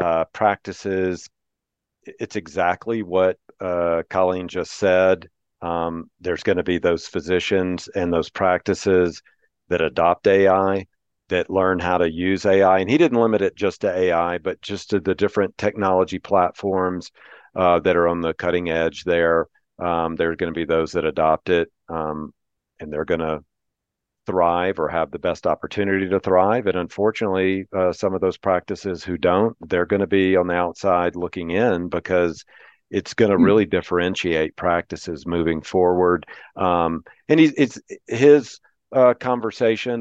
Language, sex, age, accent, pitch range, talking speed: English, male, 40-59, American, 85-95 Hz, 160 wpm